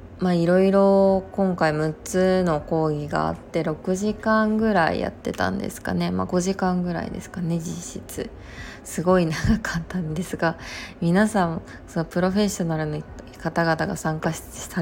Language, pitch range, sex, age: Japanese, 160-190 Hz, female, 20-39